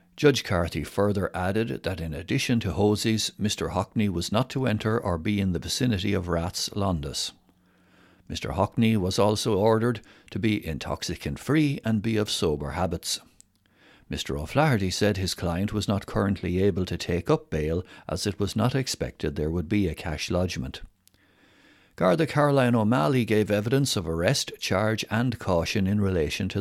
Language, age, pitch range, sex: English, 60-79, 85-110 Hz, male